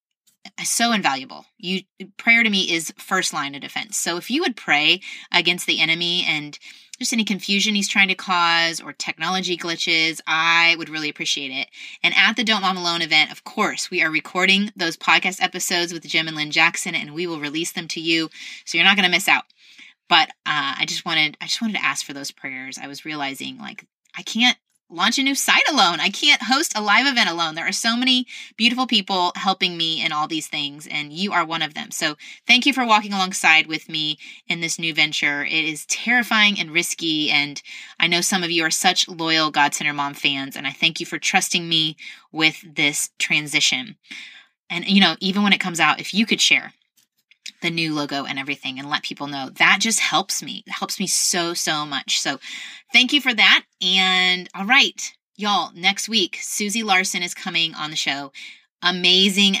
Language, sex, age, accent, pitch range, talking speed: English, female, 20-39, American, 155-200 Hz, 210 wpm